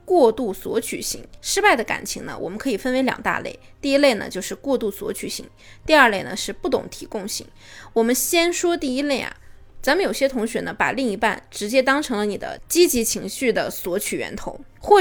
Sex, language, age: female, Chinese, 20-39